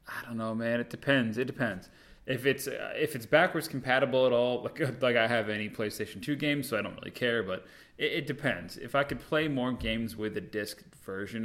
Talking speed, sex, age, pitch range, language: 230 wpm, male, 30-49, 105-125 Hz, English